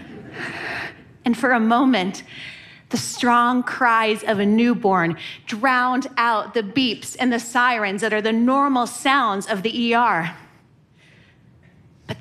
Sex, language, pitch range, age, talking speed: female, Arabic, 200-265 Hz, 30-49, 130 wpm